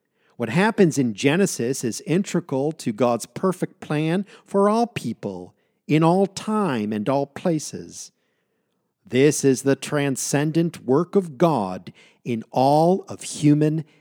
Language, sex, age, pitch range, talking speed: English, male, 50-69, 125-180 Hz, 130 wpm